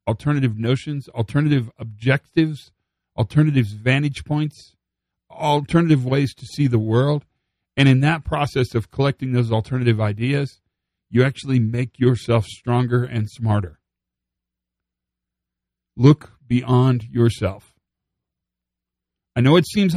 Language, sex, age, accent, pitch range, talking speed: English, male, 40-59, American, 105-140 Hz, 110 wpm